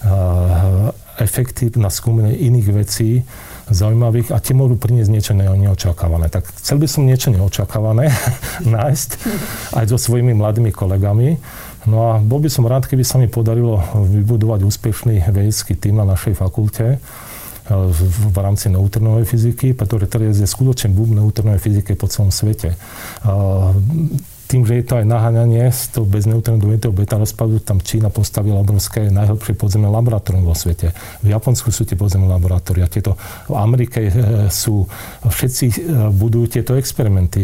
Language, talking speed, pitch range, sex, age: Slovak, 145 wpm, 100-120 Hz, male, 40-59